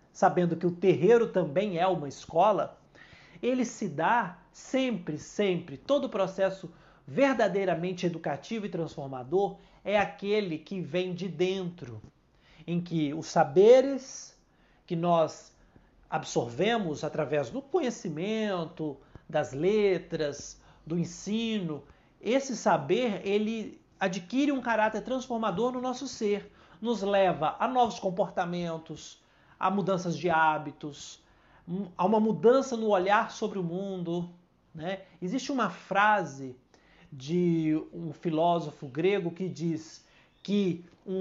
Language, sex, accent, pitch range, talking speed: Portuguese, male, Brazilian, 165-215 Hz, 115 wpm